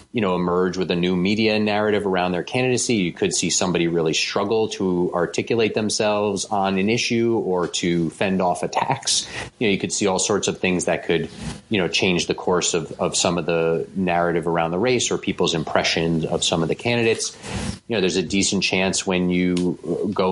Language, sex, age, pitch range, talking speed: English, male, 30-49, 85-100 Hz, 205 wpm